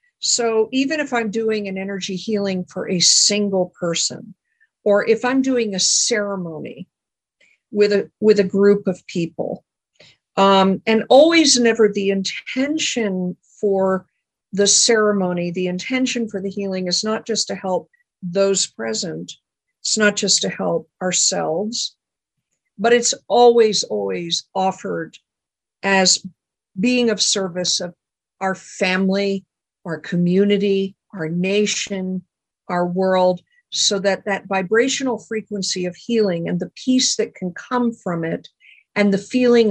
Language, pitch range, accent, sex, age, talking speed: English, 185-225 Hz, American, female, 50-69, 135 wpm